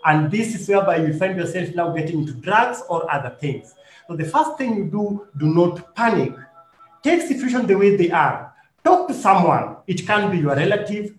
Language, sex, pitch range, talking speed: English, male, 160-225 Hz, 200 wpm